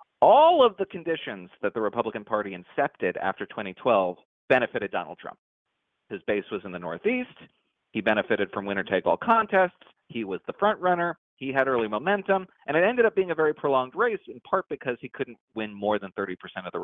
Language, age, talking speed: English, 30-49, 200 wpm